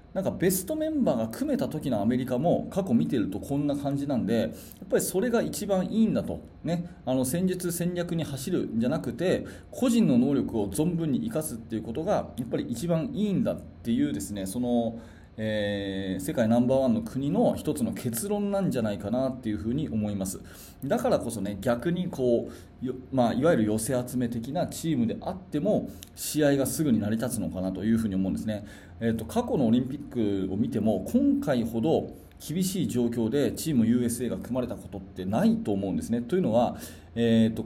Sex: male